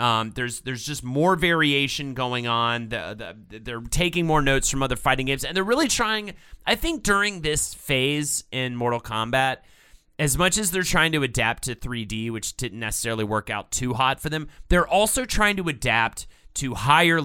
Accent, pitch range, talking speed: American, 120-160 Hz, 190 wpm